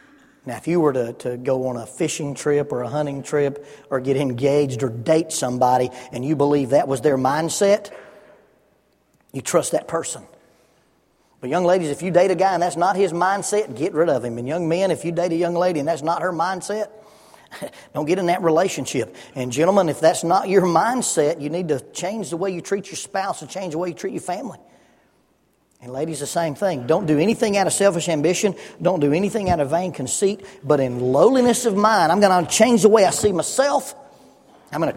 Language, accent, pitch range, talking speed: English, American, 145-195 Hz, 220 wpm